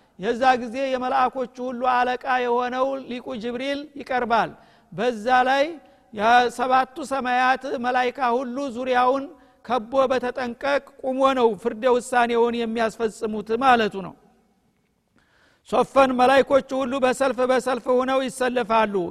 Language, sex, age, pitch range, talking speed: Amharic, male, 50-69, 240-265 Hz, 105 wpm